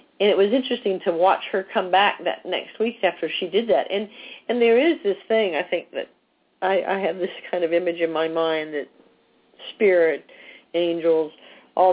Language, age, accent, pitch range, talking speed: English, 50-69, American, 175-245 Hz, 195 wpm